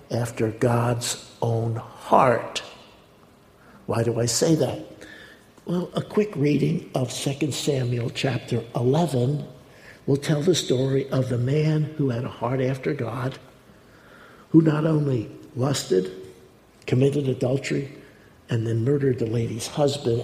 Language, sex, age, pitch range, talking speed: English, male, 60-79, 115-140 Hz, 130 wpm